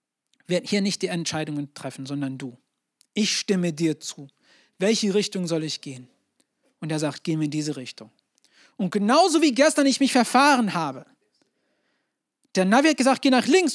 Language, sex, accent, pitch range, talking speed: German, male, German, 180-255 Hz, 175 wpm